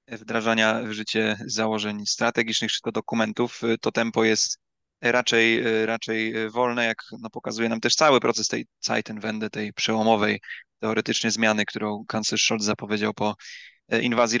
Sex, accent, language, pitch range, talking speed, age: male, native, Polish, 110-120 Hz, 135 wpm, 20-39